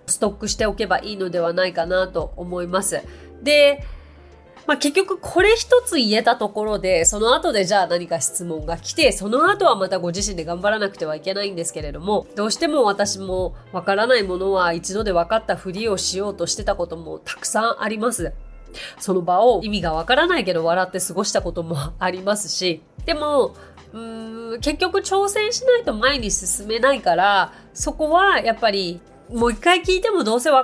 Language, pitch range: Japanese, 180-280 Hz